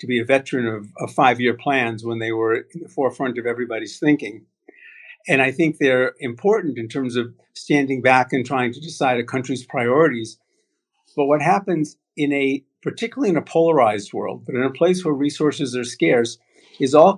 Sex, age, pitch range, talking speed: male, 50-69, 120-155 Hz, 190 wpm